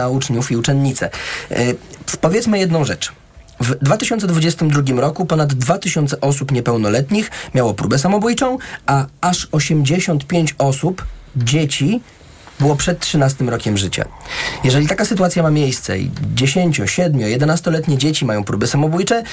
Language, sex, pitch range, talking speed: Polish, male, 115-155 Hz, 130 wpm